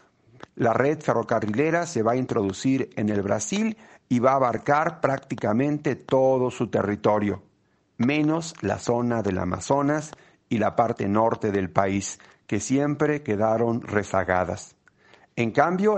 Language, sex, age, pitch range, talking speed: Spanish, male, 50-69, 110-140 Hz, 130 wpm